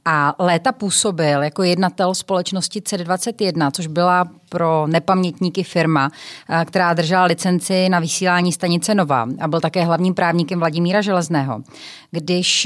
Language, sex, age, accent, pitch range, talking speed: Czech, female, 30-49, native, 160-185 Hz, 130 wpm